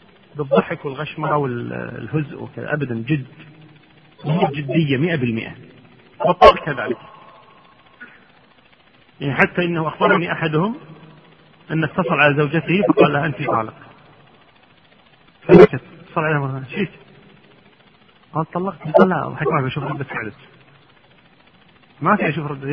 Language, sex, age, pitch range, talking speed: Arabic, male, 40-59, 150-195 Hz, 120 wpm